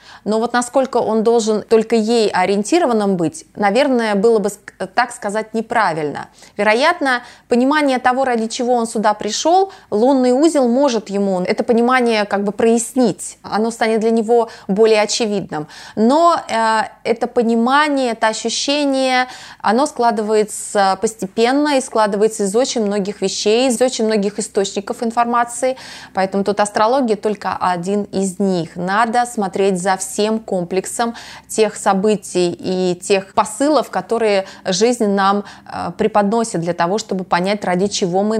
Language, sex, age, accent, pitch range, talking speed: Russian, female, 20-39, native, 195-235 Hz, 135 wpm